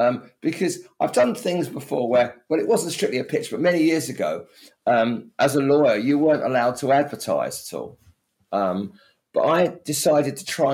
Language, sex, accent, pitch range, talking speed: English, male, British, 120-160 Hz, 190 wpm